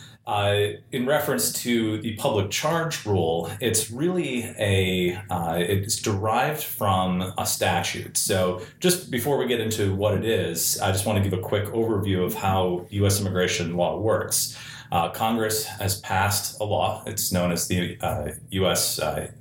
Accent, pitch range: American, 95-120 Hz